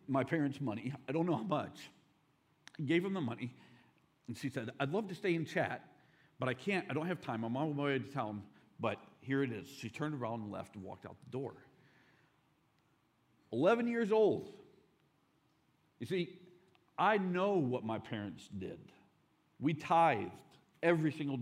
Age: 50-69